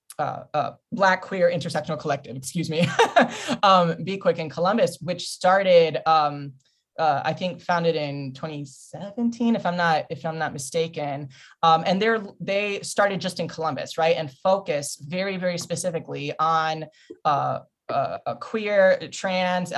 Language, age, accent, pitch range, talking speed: English, 20-39, American, 155-185 Hz, 150 wpm